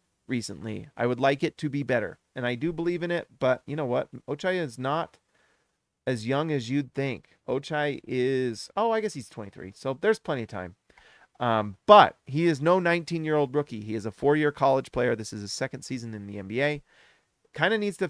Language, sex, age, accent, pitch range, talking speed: English, male, 30-49, American, 120-155 Hz, 210 wpm